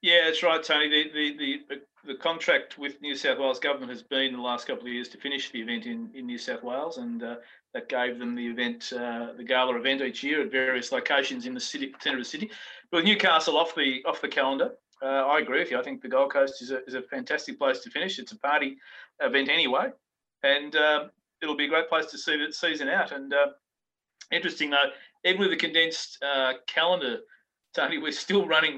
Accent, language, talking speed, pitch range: Australian, English, 230 wpm, 130-165 Hz